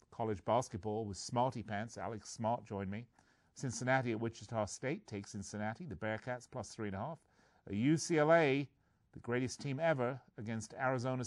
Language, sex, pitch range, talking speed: English, male, 105-135 Hz, 155 wpm